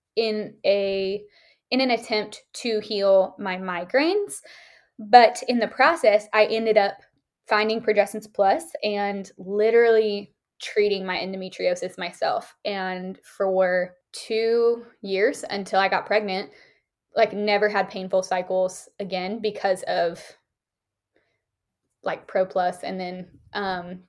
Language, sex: English, female